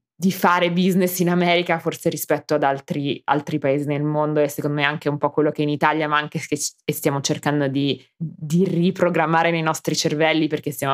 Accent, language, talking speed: native, Italian, 195 wpm